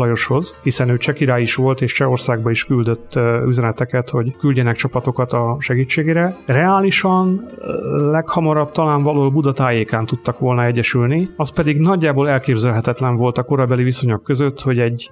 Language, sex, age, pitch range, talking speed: Hungarian, male, 30-49, 125-145 Hz, 145 wpm